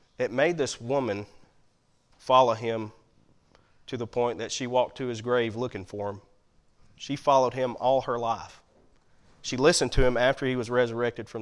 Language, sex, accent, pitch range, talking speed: English, male, American, 115-140 Hz, 175 wpm